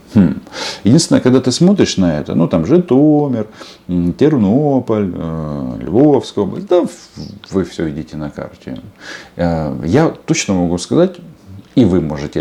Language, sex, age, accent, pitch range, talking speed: Russian, male, 40-59, native, 80-125 Hz, 120 wpm